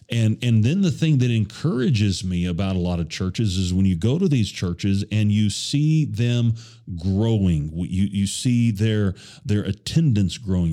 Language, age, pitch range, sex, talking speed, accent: English, 40-59, 100-130 Hz, male, 180 wpm, American